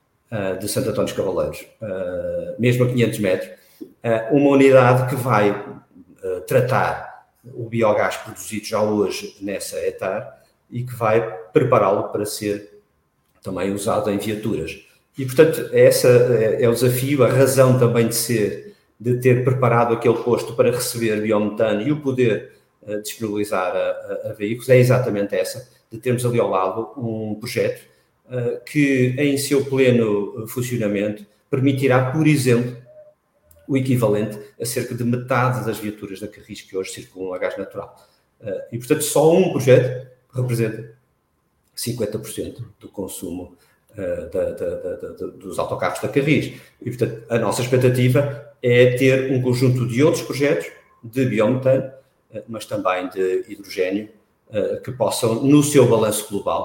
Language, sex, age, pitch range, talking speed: Portuguese, male, 50-69, 110-145 Hz, 140 wpm